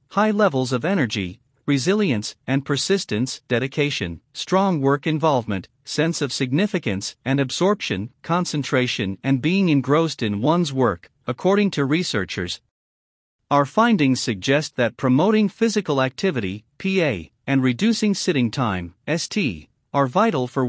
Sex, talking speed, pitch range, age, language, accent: male, 120 wpm, 120-175 Hz, 50-69, English, American